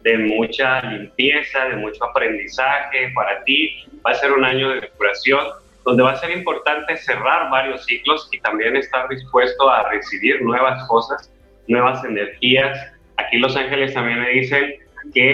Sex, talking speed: male, 160 wpm